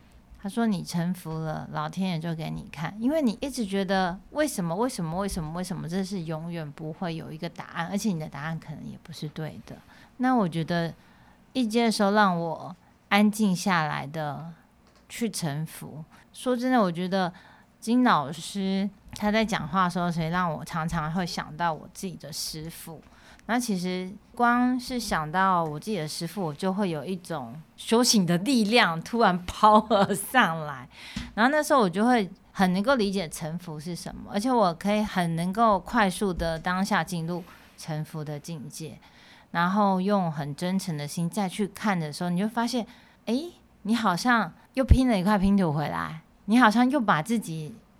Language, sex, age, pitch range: Chinese, female, 30-49, 165-210 Hz